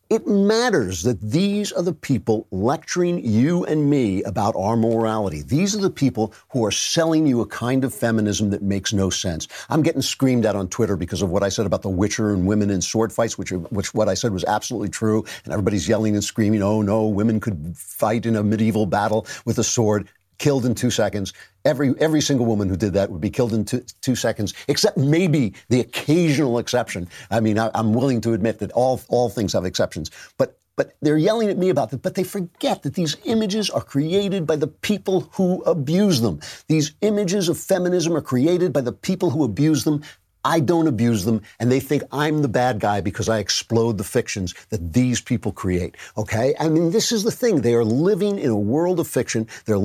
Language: English